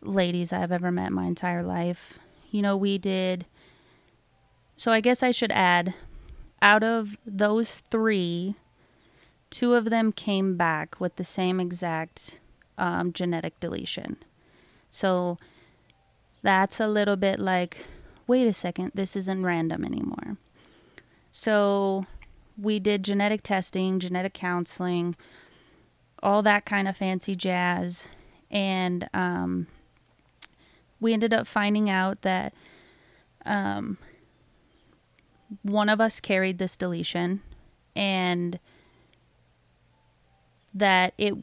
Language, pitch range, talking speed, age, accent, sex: English, 175-205 Hz, 110 wpm, 30-49, American, female